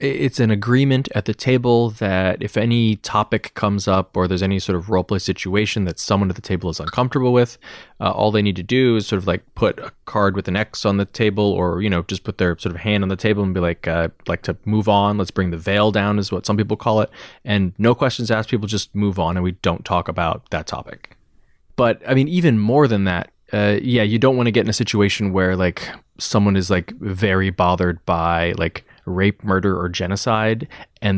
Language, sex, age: English, male, 20-39